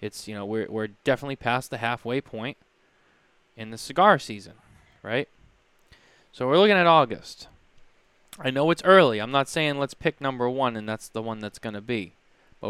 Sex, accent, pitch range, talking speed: male, American, 110-140 Hz, 190 wpm